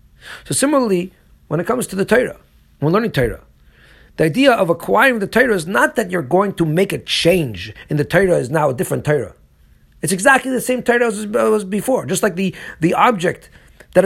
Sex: male